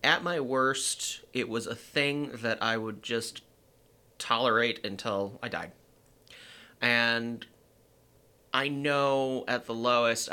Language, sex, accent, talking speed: English, male, American, 120 wpm